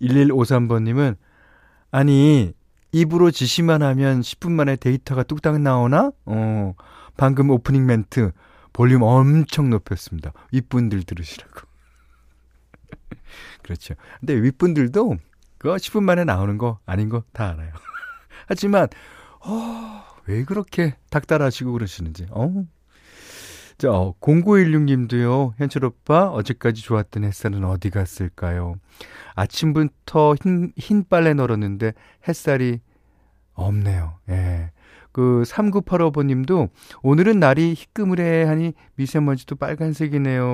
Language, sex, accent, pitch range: Korean, male, native, 105-160 Hz